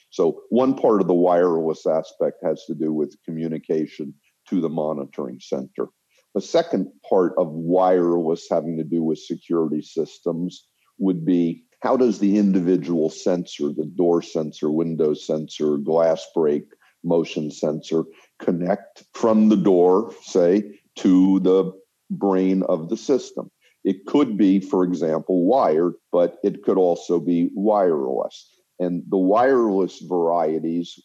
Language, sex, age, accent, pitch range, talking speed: English, male, 50-69, American, 80-95 Hz, 135 wpm